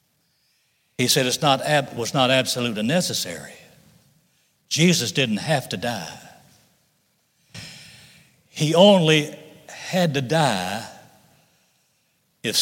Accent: American